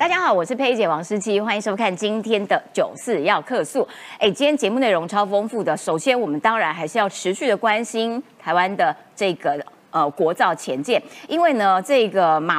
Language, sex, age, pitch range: Chinese, female, 30-49, 205-310 Hz